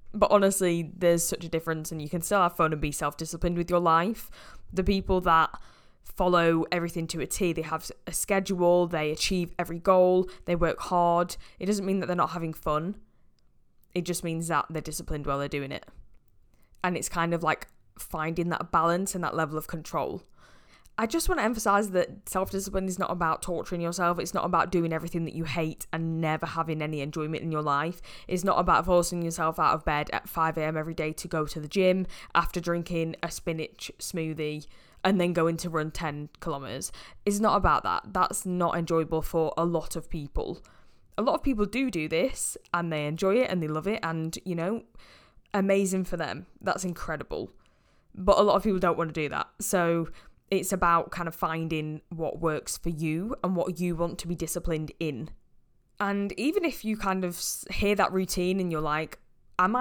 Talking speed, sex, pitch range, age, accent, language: 200 wpm, female, 160-185 Hz, 10-29, British, English